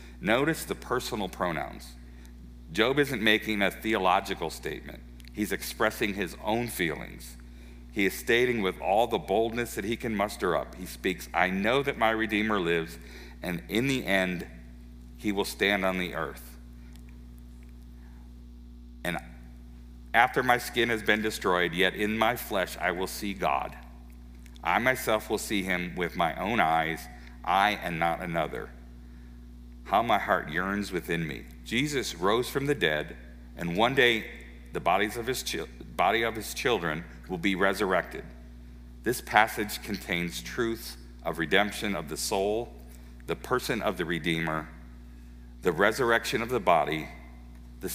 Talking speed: 150 wpm